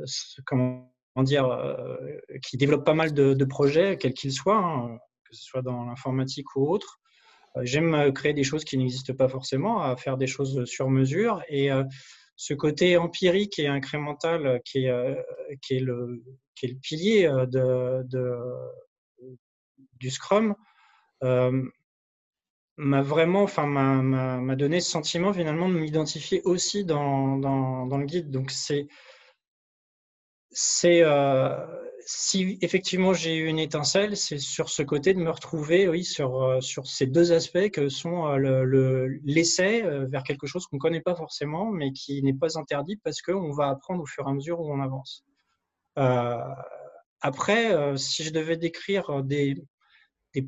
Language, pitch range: French, 135-170 Hz